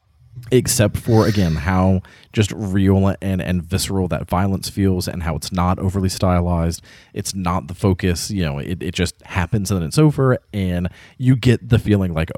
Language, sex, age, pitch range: English, male, 30-49, 90-120 Hz